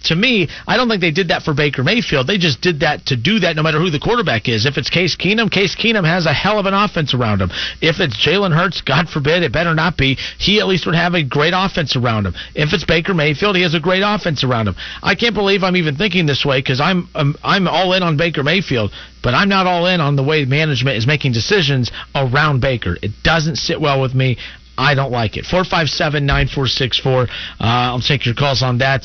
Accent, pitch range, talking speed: American, 130-175 Hz, 240 wpm